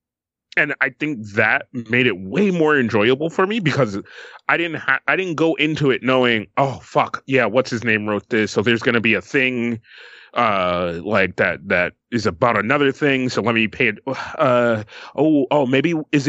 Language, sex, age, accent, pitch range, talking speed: English, male, 30-49, American, 110-150 Hz, 200 wpm